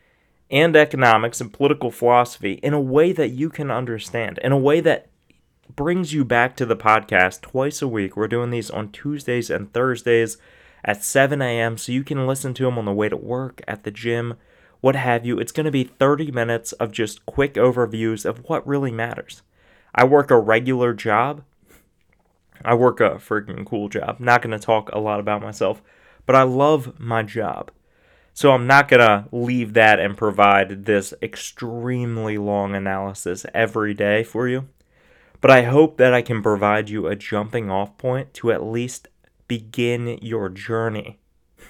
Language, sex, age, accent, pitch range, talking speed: English, male, 20-39, American, 105-130 Hz, 180 wpm